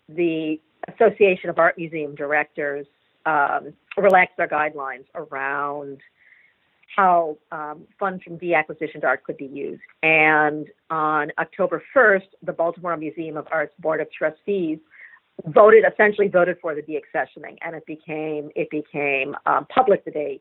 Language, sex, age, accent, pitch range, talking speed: English, female, 50-69, American, 155-195 Hz, 135 wpm